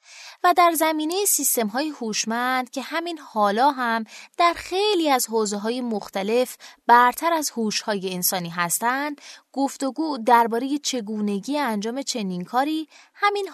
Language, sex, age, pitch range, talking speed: Persian, female, 20-39, 200-300 Hz, 120 wpm